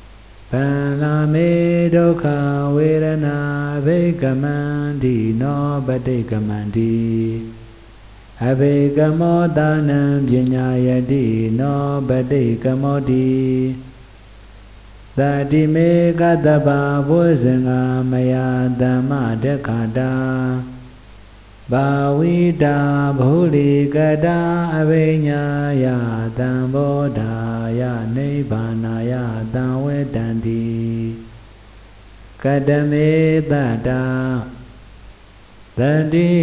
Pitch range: 115-145 Hz